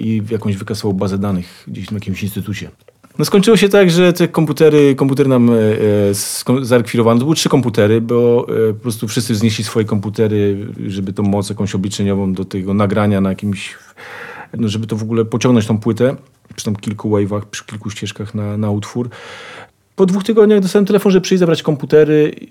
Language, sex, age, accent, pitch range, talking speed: Polish, male, 40-59, native, 105-140 Hz, 180 wpm